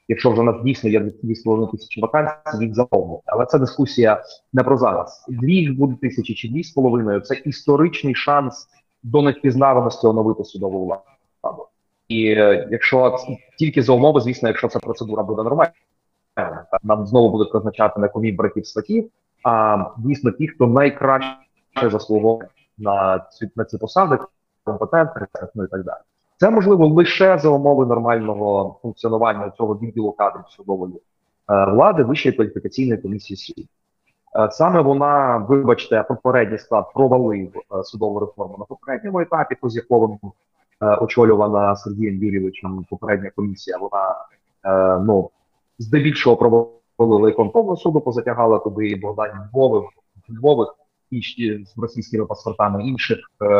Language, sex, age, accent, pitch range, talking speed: Ukrainian, male, 30-49, native, 105-135 Hz, 130 wpm